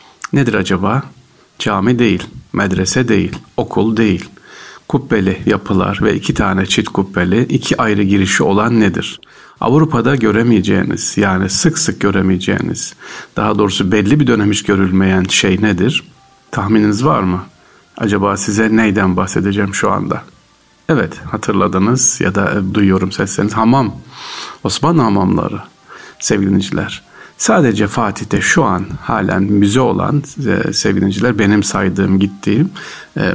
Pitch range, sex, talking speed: 100-120 Hz, male, 120 wpm